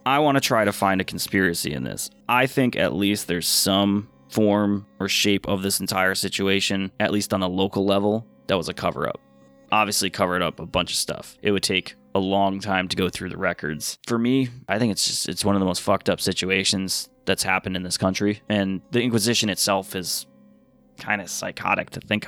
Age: 20-39